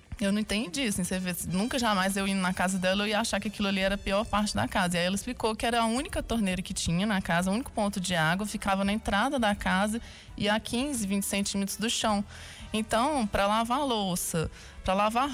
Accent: Brazilian